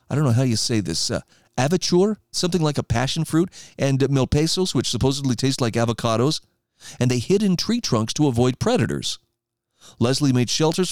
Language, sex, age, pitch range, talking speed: English, male, 40-59, 115-160 Hz, 180 wpm